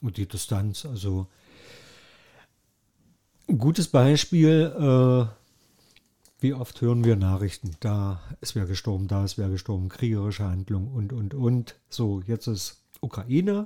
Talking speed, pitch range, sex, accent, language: 130 wpm, 105-135 Hz, male, German, German